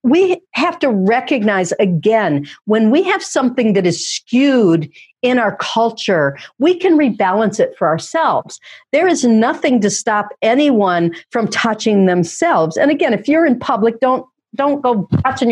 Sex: female